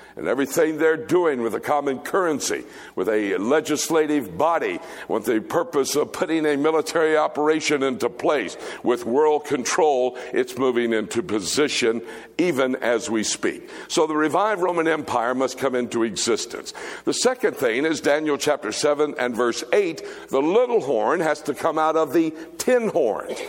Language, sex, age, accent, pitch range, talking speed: English, male, 60-79, American, 140-225 Hz, 160 wpm